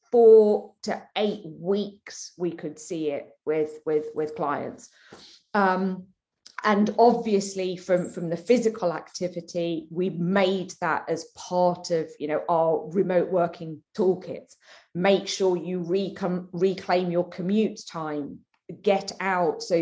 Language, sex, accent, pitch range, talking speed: English, female, British, 170-215 Hz, 130 wpm